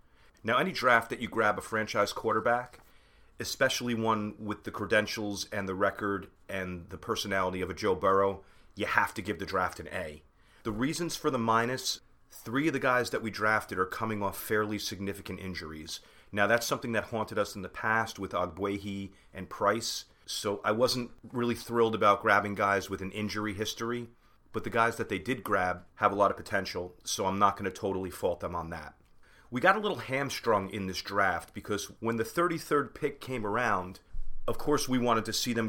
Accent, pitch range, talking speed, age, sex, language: American, 95-120 Hz, 200 wpm, 30-49, male, English